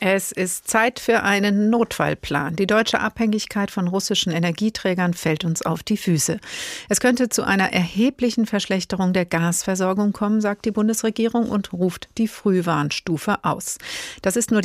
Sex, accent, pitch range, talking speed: female, German, 180-220 Hz, 150 wpm